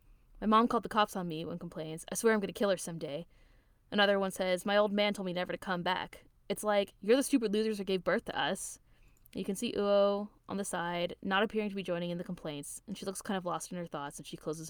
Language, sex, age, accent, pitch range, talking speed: English, female, 20-39, American, 170-205 Hz, 275 wpm